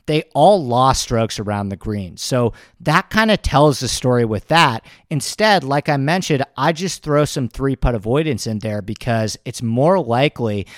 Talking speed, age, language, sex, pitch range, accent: 185 wpm, 40-59, English, male, 110-145 Hz, American